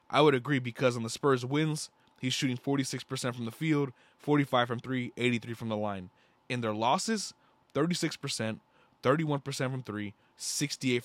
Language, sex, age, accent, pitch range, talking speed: English, male, 20-39, American, 120-150 Hz, 160 wpm